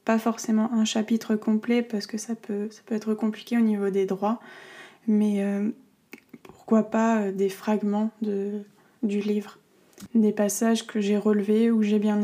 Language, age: French, 20-39